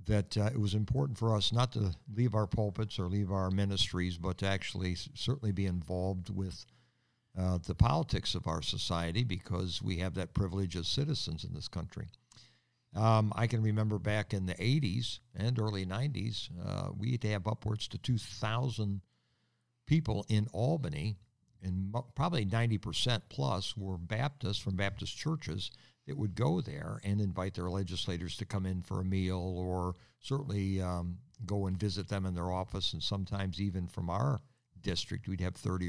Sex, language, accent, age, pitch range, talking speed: male, English, American, 60-79, 95-120 Hz, 170 wpm